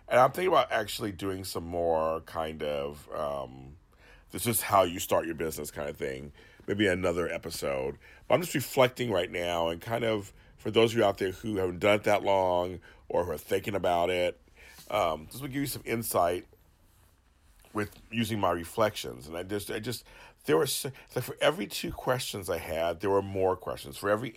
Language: English